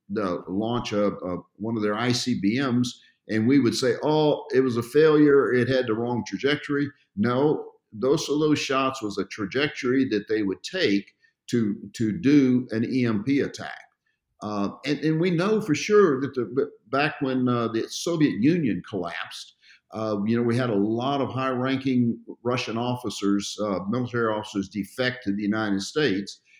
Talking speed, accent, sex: 170 wpm, American, male